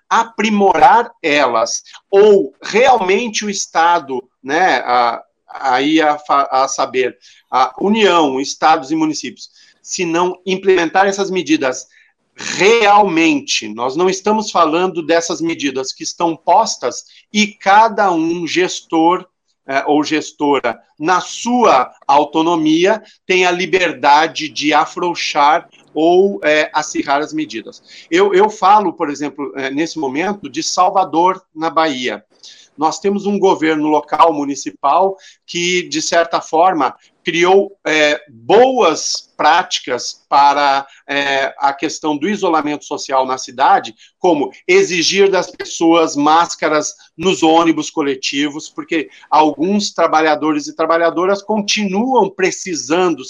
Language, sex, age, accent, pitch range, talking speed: Portuguese, male, 50-69, Brazilian, 155-205 Hz, 105 wpm